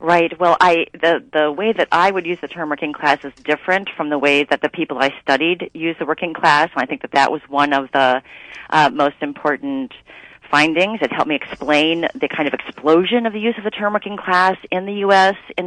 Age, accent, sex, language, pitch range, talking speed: 40-59, American, female, English, 150-180 Hz, 235 wpm